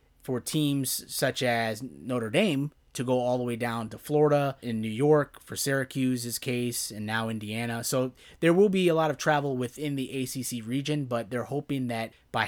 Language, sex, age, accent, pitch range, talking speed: English, male, 30-49, American, 115-145 Hz, 190 wpm